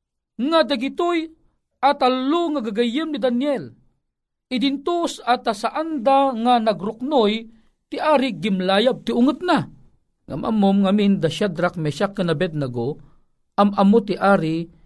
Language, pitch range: Filipino, 150-200 Hz